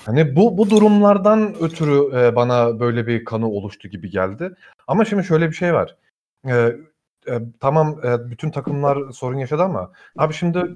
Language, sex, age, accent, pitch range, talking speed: Turkish, male, 40-59, native, 115-160 Hz, 160 wpm